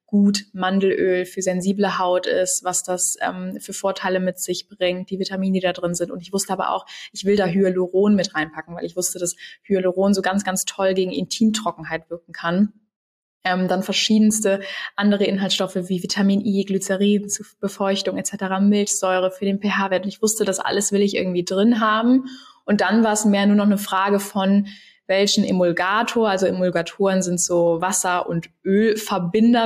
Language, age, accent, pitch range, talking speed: German, 20-39, German, 185-205 Hz, 180 wpm